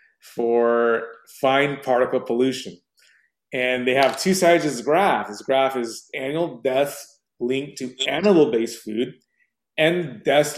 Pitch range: 125-175 Hz